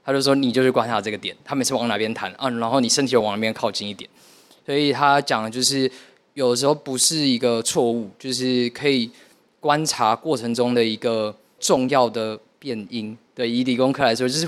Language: Chinese